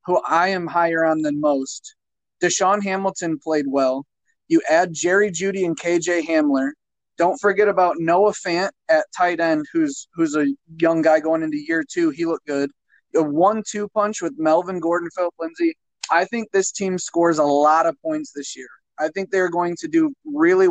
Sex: male